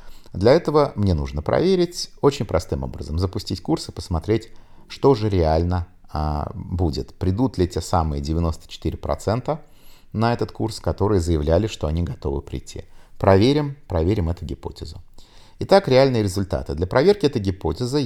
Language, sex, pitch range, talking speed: Russian, male, 80-105 Hz, 135 wpm